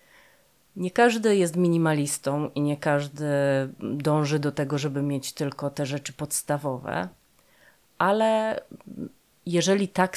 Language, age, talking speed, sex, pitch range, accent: Polish, 30-49, 110 wpm, female, 145-175 Hz, native